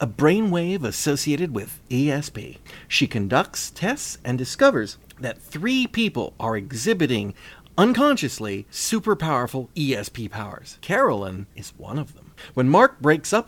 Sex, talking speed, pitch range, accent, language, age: male, 130 wpm, 115-180 Hz, American, English, 30-49